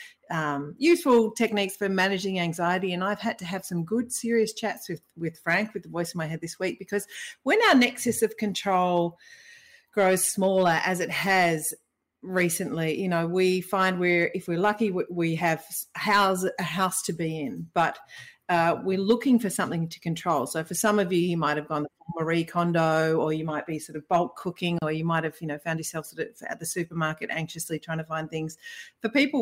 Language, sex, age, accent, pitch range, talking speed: English, female, 40-59, Australian, 160-195 Hz, 210 wpm